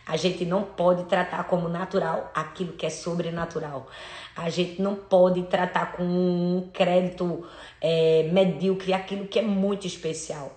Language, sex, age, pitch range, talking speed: Portuguese, female, 20-39, 170-195 Hz, 140 wpm